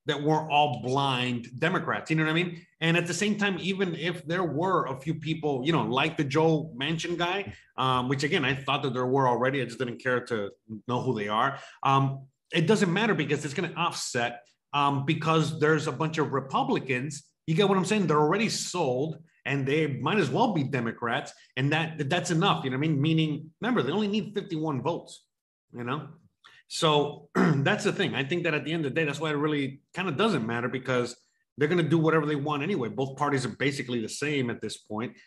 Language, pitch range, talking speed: English, 130-165 Hz, 225 wpm